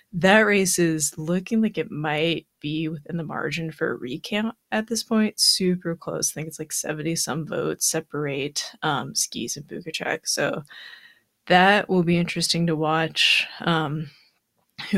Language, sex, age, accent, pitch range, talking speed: English, female, 20-39, American, 160-190 Hz, 150 wpm